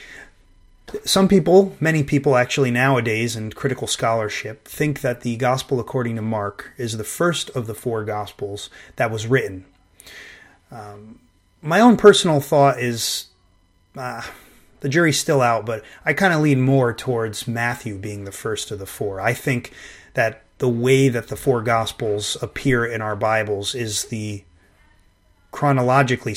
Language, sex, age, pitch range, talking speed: English, male, 30-49, 110-140 Hz, 150 wpm